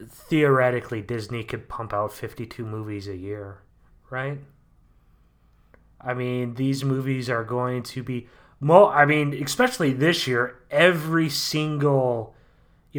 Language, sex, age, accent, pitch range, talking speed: English, male, 20-39, American, 110-130 Hz, 125 wpm